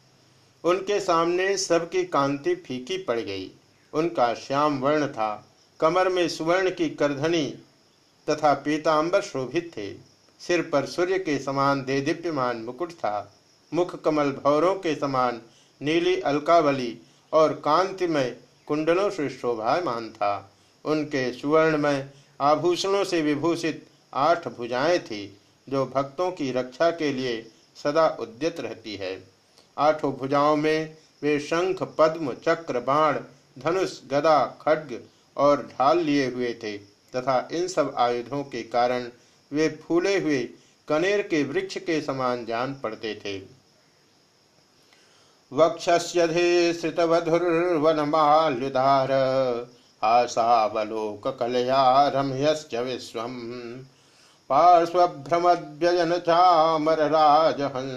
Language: Hindi